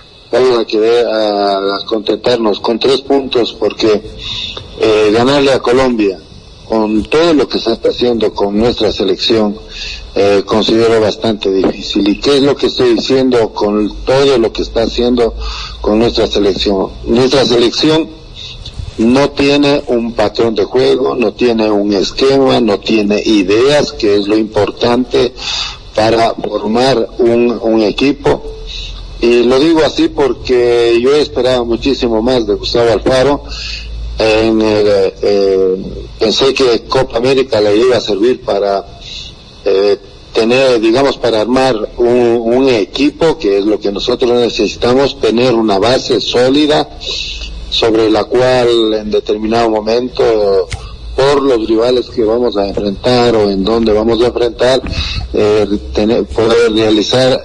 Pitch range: 105-130 Hz